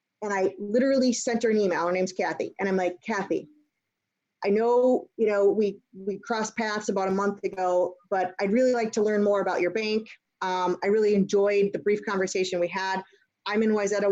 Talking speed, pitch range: 205 wpm, 190-220 Hz